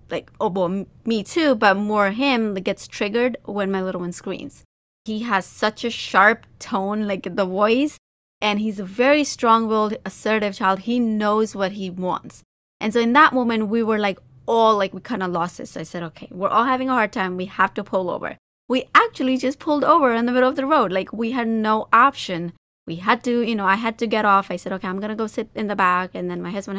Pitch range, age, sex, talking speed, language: 190-235 Hz, 20-39, female, 245 wpm, English